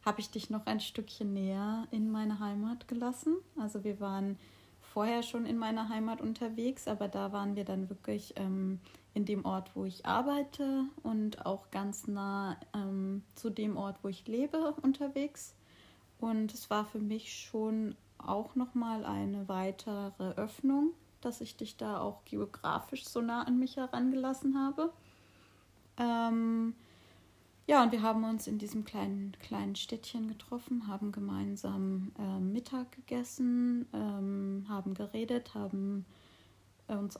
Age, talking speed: 30-49, 145 wpm